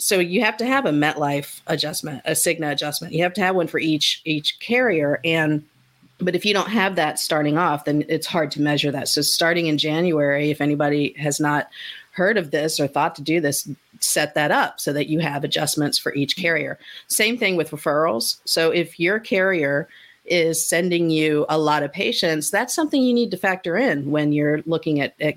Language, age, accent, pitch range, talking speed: English, 40-59, American, 145-175 Hz, 210 wpm